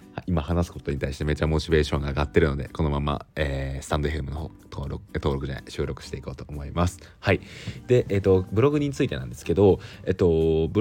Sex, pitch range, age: male, 75-105 Hz, 20-39